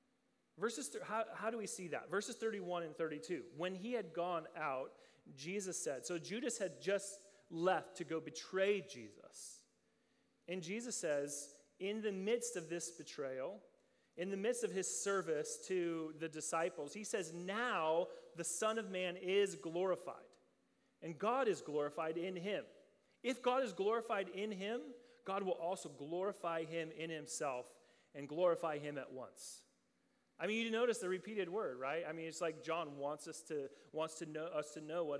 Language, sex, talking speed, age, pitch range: English, male, 170 wpm, 30-49, 160-225 Hz